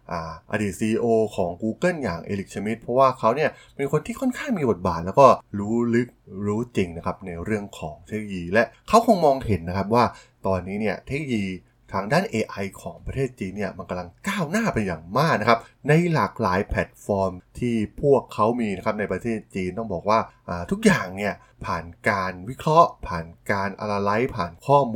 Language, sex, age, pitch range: Thai, male, 20-39, 95-135 Hz